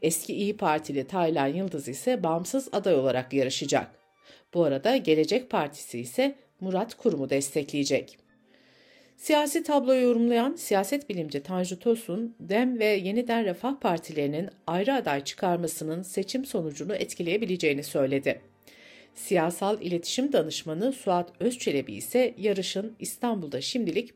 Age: 60-79